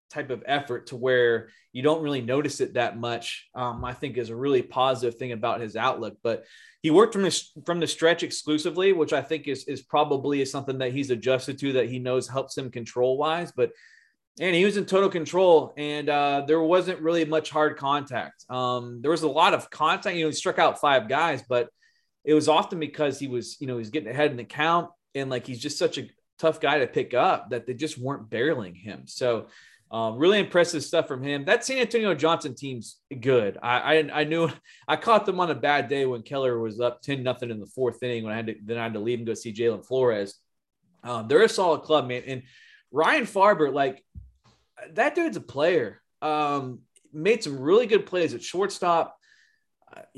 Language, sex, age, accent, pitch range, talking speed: English, male, 20-39, American, 125-165 Hz, 220 wpm